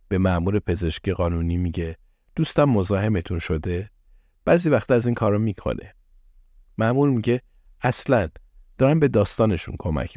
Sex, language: male, Persian